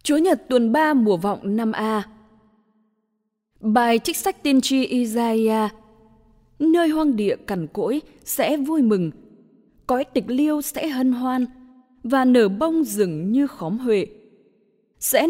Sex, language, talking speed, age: female, English, 140 wpm, 20-39